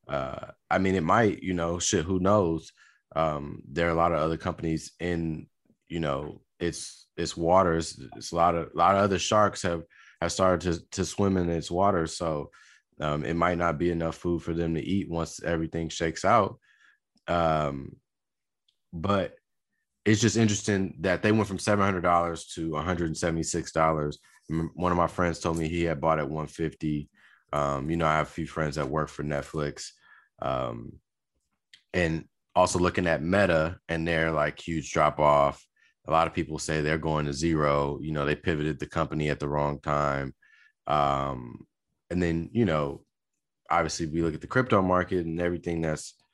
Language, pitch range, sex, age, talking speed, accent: English, 75-90 Hz, male, 30-49, 180 wpm, American